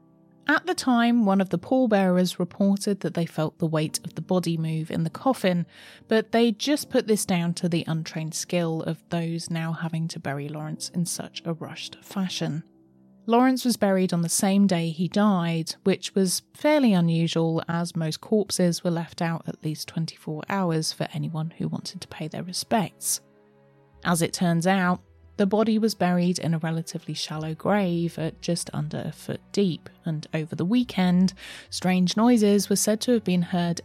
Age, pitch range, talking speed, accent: 30-49, 165-210 Hz, 185 wpm, British